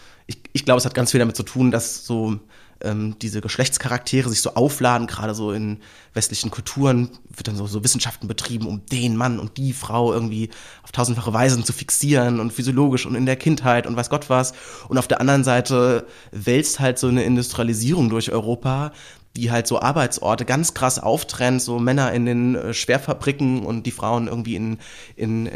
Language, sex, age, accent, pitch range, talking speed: German, male, 20-39, German, 115-130 Hz, 190 wpm